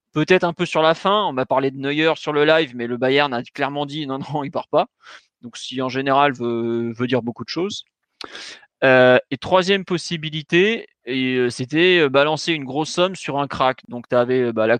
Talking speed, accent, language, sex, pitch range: 215 wpm, French, French, male, 125-160 Hz